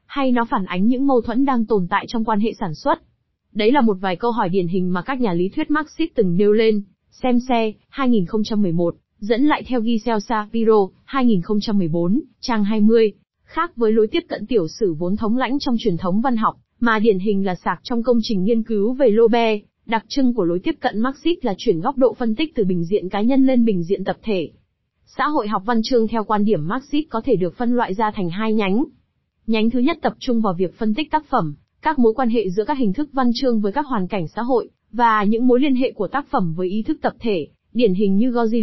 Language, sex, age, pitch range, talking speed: Vietnamese, female, 20-39, 205-250 Hz, 240 wpm